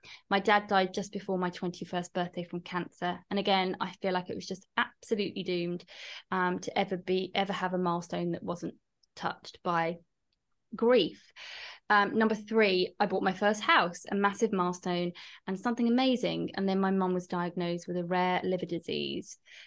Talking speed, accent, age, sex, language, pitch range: 175 wpm, British, 20-39, female, English, 180-200 Hz